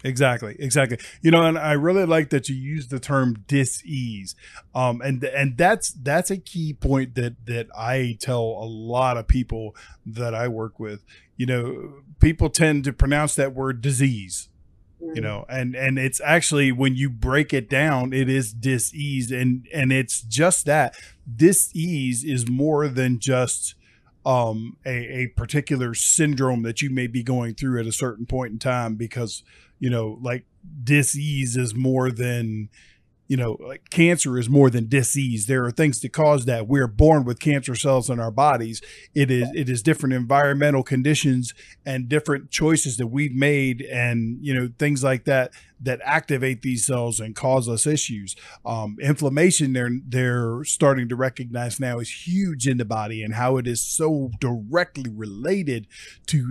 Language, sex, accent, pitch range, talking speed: English, male, American, 120-145 Hz, 175 wpm